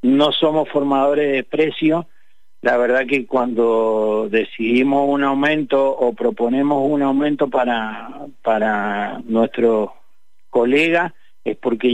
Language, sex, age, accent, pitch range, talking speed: Spanish, male, 50-69, Argentinian, 125-150 Hz, 110 wpm